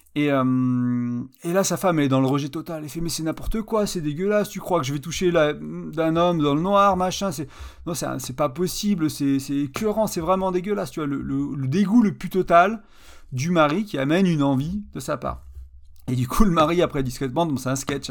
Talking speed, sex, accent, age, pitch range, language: 245 wpm, male, French, 40-59, 140-185 Hz, French